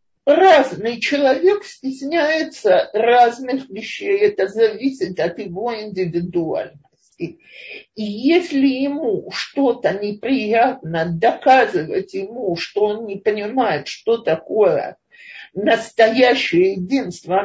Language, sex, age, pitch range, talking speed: Russian, male, 50-69, 190-285 Hz, 85 wpm